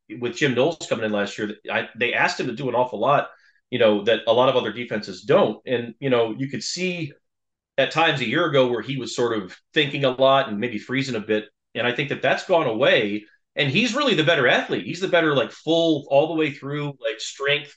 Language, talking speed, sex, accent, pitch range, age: English, 245 wpm, male, American, 120-150 Hz, 30-49